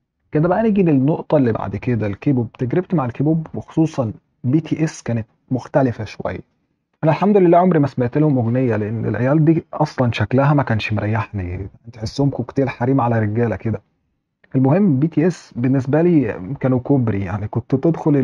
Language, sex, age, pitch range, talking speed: Arabic, male, 30-49, 125-150 Hz, 170 wpm